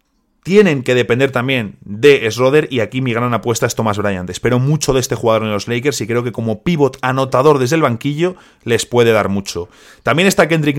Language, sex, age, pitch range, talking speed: Spanish, male, 30-49, 110-145 Hz, 210 wpm